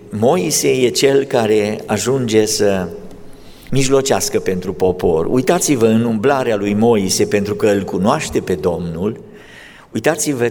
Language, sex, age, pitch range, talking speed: Romanian, male, 50-69, 115-175 Hz, 120 wpm